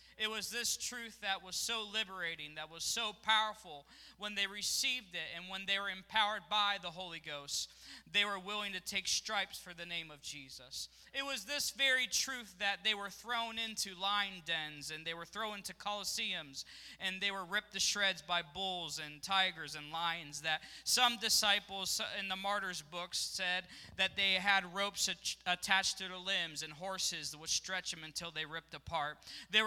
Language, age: English, 20-39